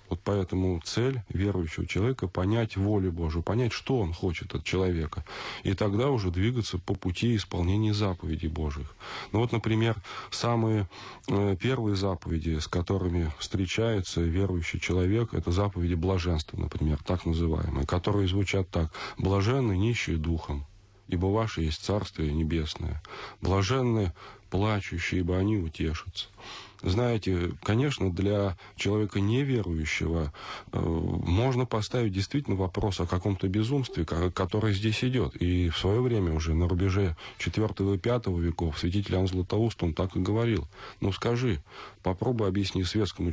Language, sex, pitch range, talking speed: Russian, male, 85-110 Hz, 130 wpm